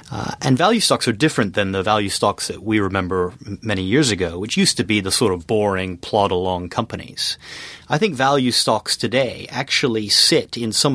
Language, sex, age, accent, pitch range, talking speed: English, male, 30-49, American, 95-120 Hz, 190 wpm